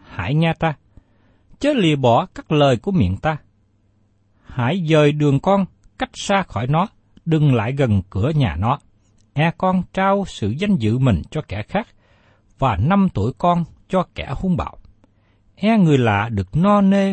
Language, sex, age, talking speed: Vietnamese, male, 60-79, 170 wpm